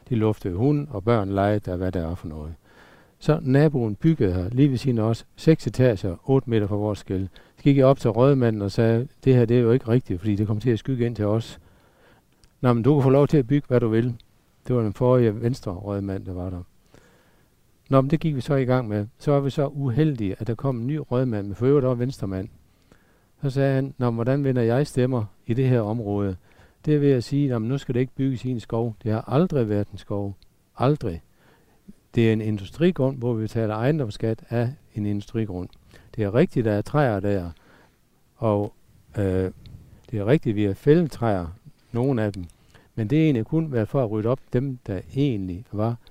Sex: male